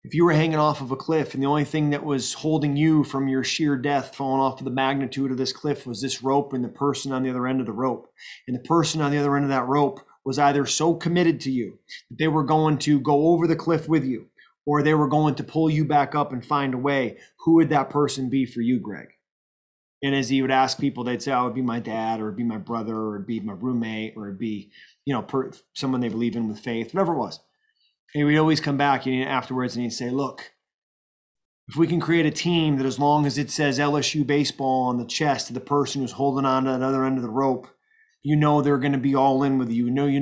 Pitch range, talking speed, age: 130-145 Hz, 275 wpm, 30-49